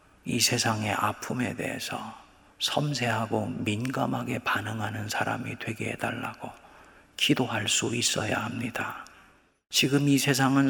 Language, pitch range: Korean, 120-170 Hz